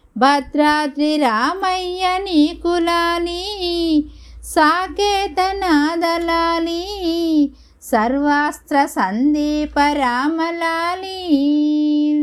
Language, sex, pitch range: Telugu, female, 295-355 Hz